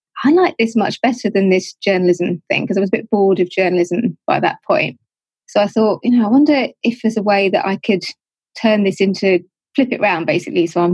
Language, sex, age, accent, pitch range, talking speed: English, female, 20-39, British, 175-210 Hz, 235 wpm